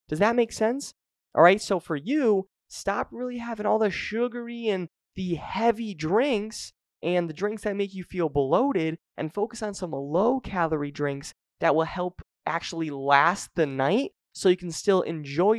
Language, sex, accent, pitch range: English, male, American, 145-185 Hz